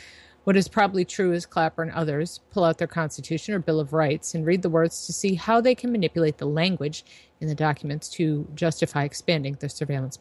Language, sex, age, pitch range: English, female, 30-49, 150-170 Hz